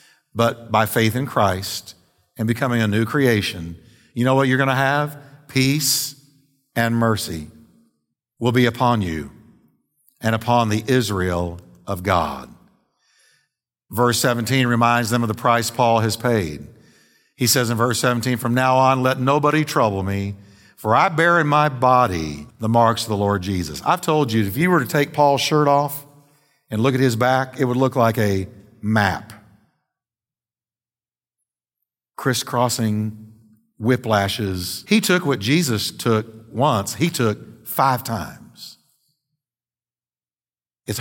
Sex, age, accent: male, 50-69, American